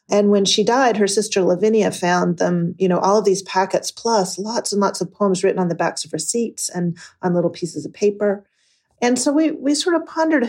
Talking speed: 230 wpm